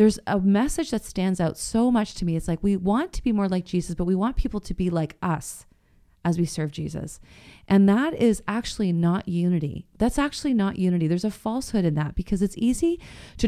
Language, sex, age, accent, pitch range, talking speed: English, female, 30-49, American, 175-210 Hz, 225 wpm